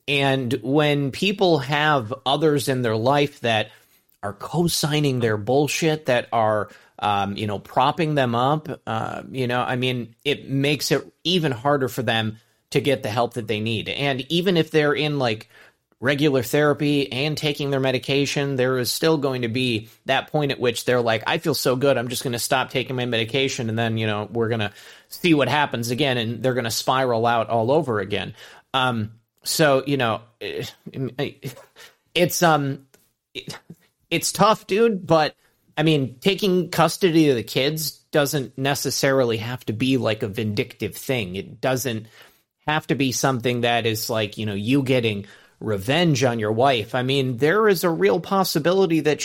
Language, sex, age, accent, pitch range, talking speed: English, male, 30-49, American, 120-150 Hz, 185 wpm